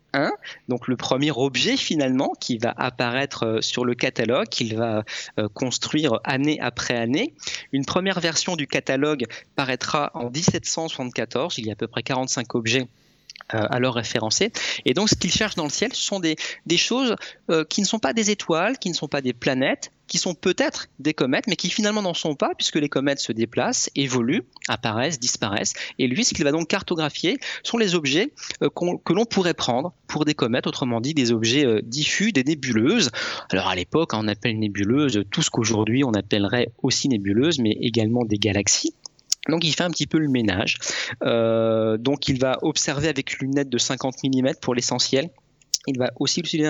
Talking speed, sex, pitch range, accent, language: 195 wpm, male, 120-160 Hz, French, French